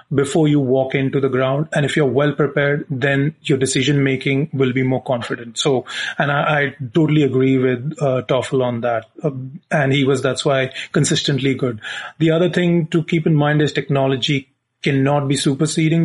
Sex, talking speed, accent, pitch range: male, 180 wpm, Indian, 135-165 Hz